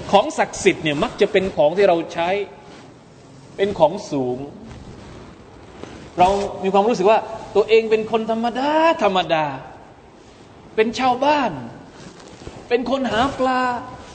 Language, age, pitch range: Thai, 20-39, 185-270 Hz